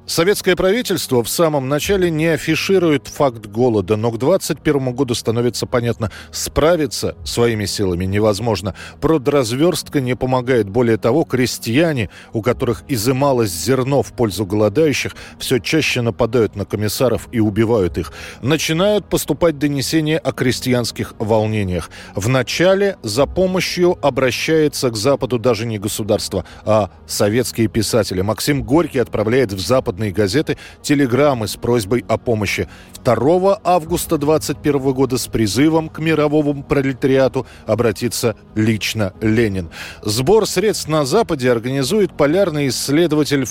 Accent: native